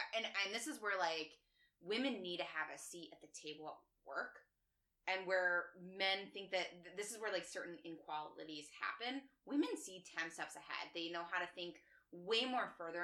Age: 20-39